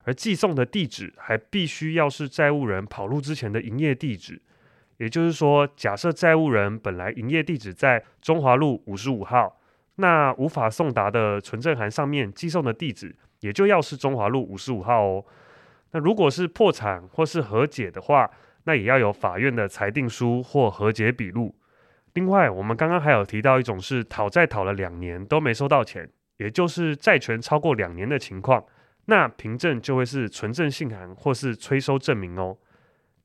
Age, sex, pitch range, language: 20-39, male, 110-150 Hz, Chinese